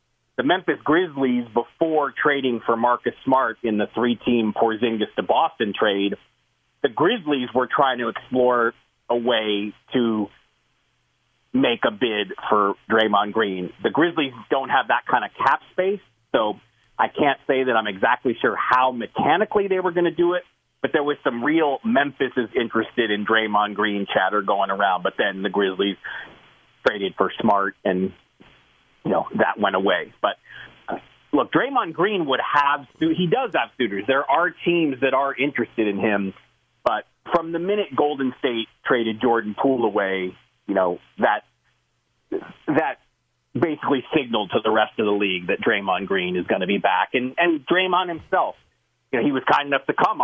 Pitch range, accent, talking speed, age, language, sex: 105-145 Hz, American, 170 wpm, 40-59, English, male